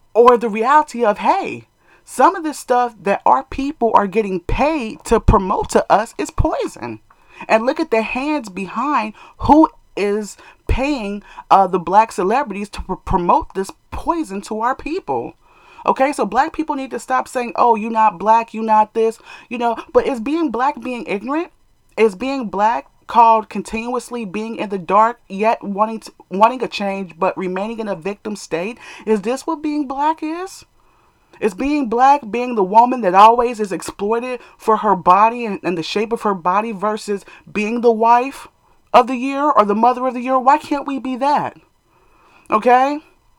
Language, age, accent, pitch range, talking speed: English, 30-49, American, 200-260 Hz, 180 wpm